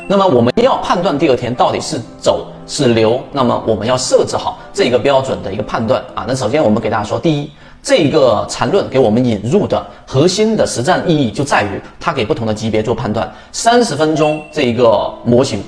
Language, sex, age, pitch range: Chinese, male, 30-49, 110-170 Hz